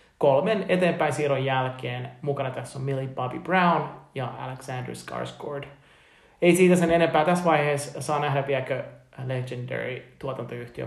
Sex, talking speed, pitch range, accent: male, 125 wpm, 125-160 Hz, native